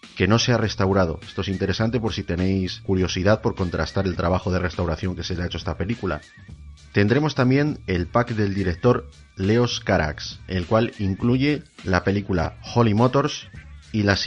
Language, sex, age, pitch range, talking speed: Spanish, male, 30-49, 90-115 Hz, 175 wpm